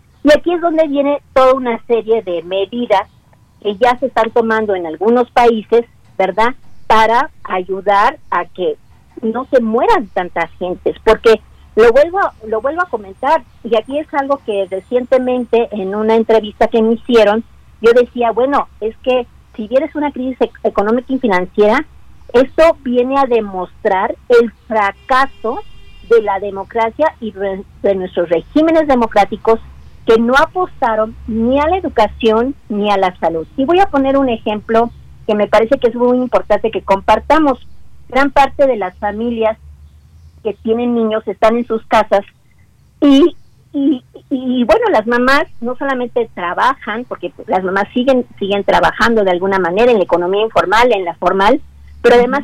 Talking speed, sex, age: 155 wpm, female, 50-69